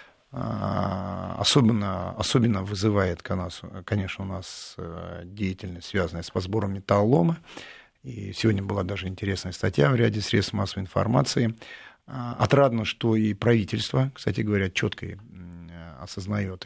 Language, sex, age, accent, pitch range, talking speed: Russian, male, 40-59, native, 95-115 Hz, 110 wpm